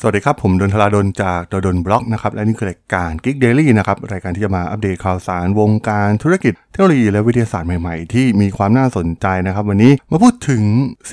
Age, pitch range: 20-39, 95-120 Hz